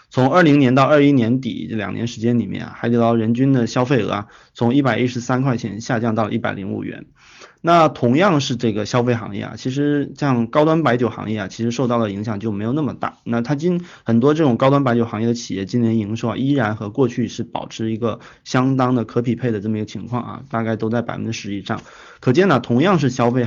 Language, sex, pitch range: Chinese, male, 110-135 Hz